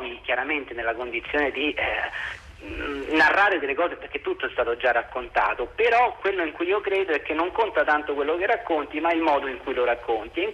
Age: 40-59